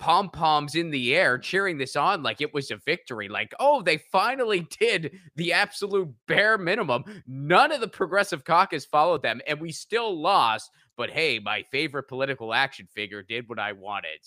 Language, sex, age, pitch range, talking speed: English, male, 20-39, 115-170 Hz, 180 wpm